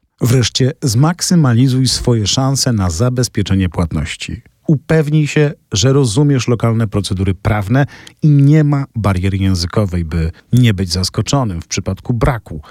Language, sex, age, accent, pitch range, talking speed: Polish, male, 40-59, native, 95-135 Hz, 125 wpm